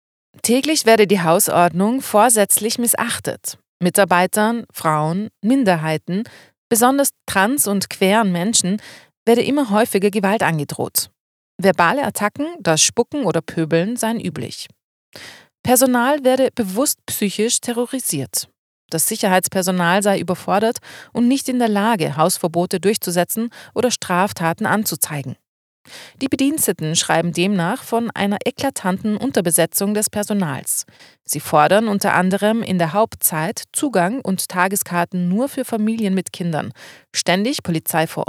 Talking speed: 115 wpm